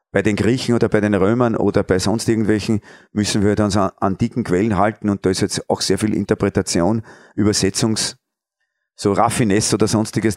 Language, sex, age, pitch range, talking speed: German, male, 40-59, 115-150 Hz, 180 wpm